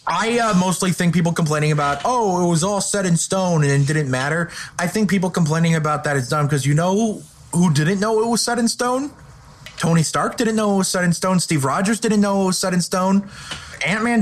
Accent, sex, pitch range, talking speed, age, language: American, male, 155-215 Hz, 235 wpm, 30-49, English